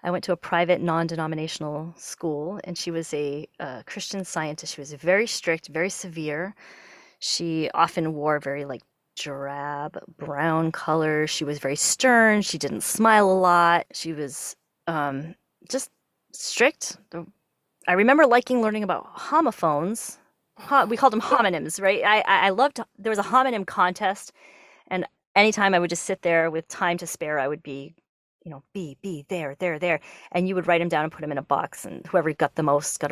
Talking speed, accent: 180 wpm, American